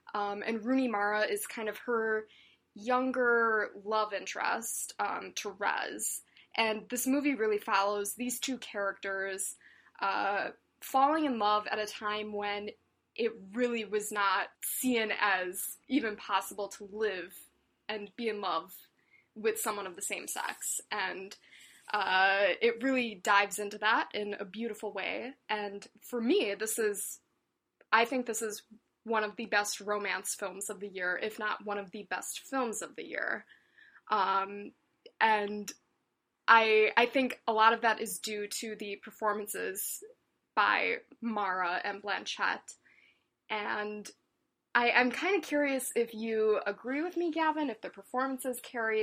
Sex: female